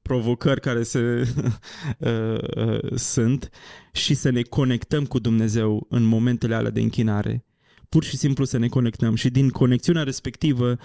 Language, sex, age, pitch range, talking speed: Romanian, male, 20-39, 115-140 Hz, 155 wpm